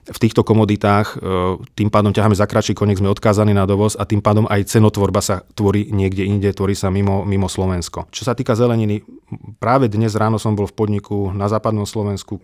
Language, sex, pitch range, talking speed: Slovak, male, 100-110 Hz, 200 wpm